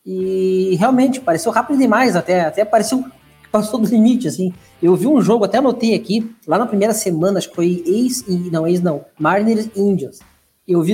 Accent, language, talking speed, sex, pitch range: Brazilian, Portuguese, 185 wpm, male, 190-260 Hz